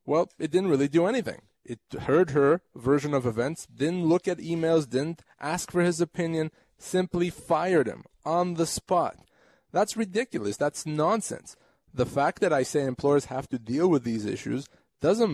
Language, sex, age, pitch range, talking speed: English, male, 20-39, 120-160 Hz, 170 wpm